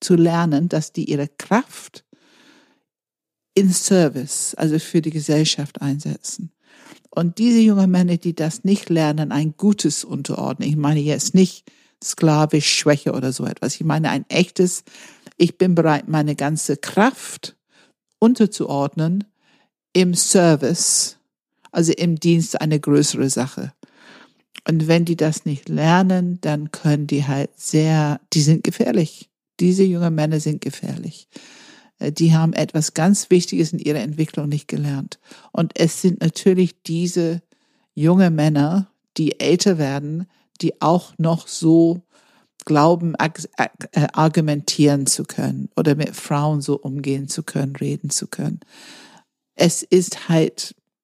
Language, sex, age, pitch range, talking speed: German, female, 60-79, 150-190 Hz, 130 wpm